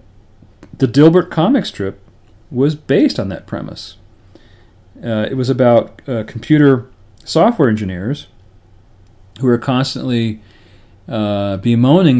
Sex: male